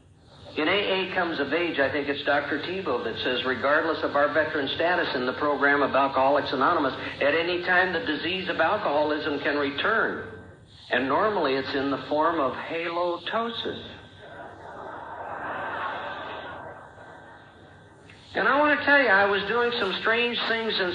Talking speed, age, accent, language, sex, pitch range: 150 wpm, 60-79, American, English, male, 145-190 Hz